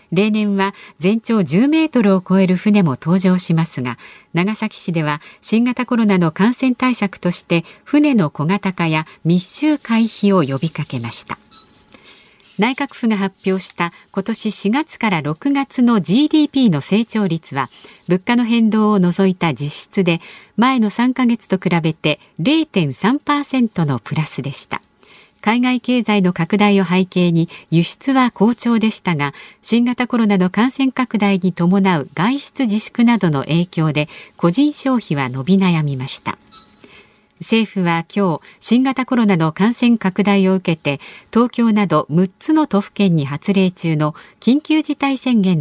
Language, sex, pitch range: Japanese, female, 170-235 Hz